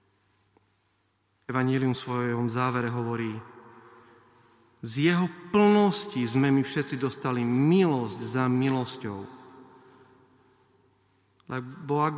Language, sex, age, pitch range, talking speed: Slovak, male, 40-59, 115-140 Hz, 85 wpm